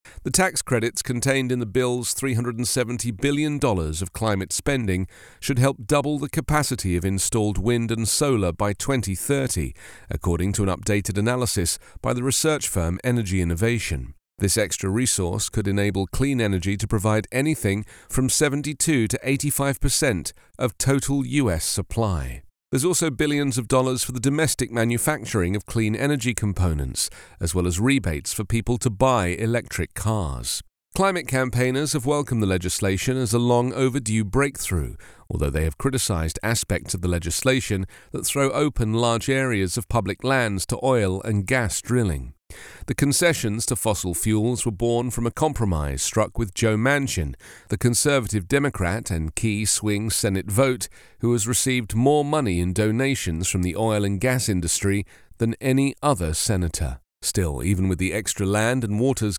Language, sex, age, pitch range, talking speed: English, male, 40-59, 95-130 Hz, 155 wpm